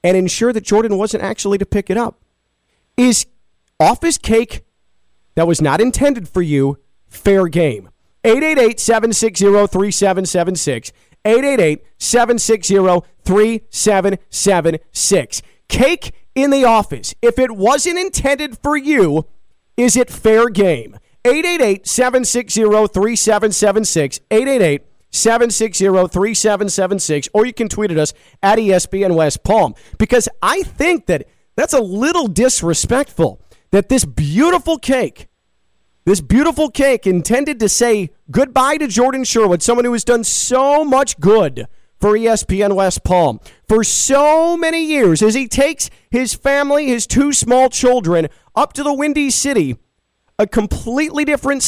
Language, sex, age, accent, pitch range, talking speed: English, male, 40-59, American, 190-260 Hz, 130 wpm